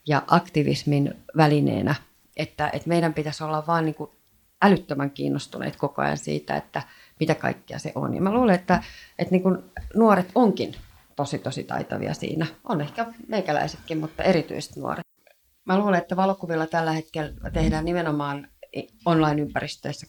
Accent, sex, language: native, female, Finnish